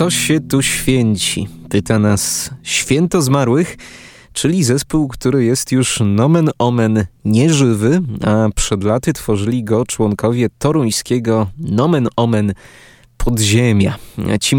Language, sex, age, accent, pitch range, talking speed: Polish, male, 20-39, native, 105-135 Hz, 110 wpm